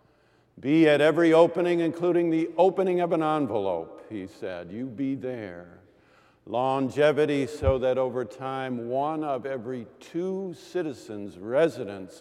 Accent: American